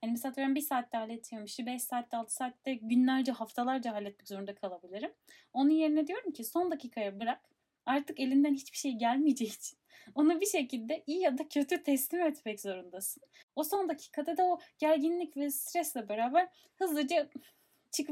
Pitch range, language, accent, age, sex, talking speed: 220-290 Hz, Turkish, native, 10-29, female, 160 wpm